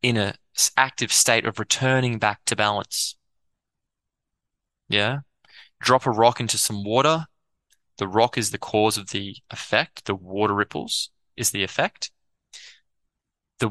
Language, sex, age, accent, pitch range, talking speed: English, male, 20-39, Australian, 105-130 Hz, 135 wpm